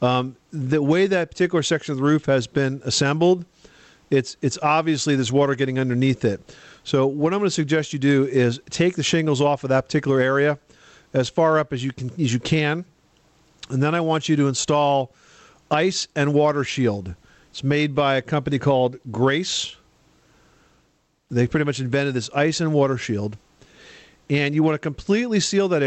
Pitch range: 130-155 Hz